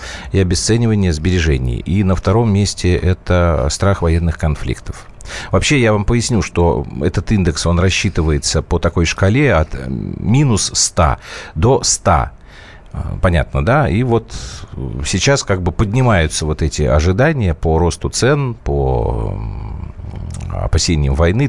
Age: 40-59